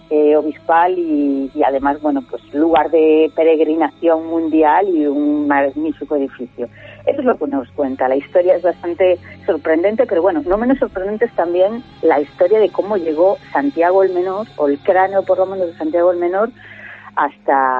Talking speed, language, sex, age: 175 wpm, Spanish, female, 40-59